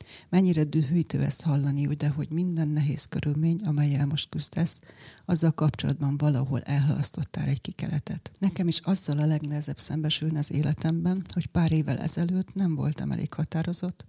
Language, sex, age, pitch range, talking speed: Hungarian, female, 30-49, 150-170 Hz, 150 wpm